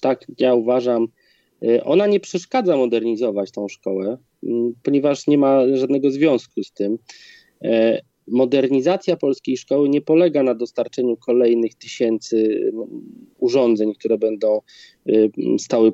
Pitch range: 120-160 Hz